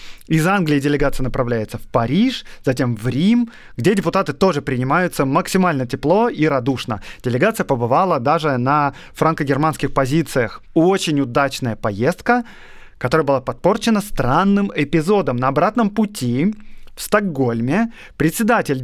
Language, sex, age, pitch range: Russian, male, 30-49, 130-180 Hz